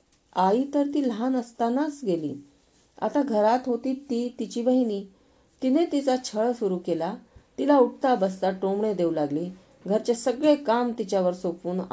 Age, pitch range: 40-59, 180-255 Hz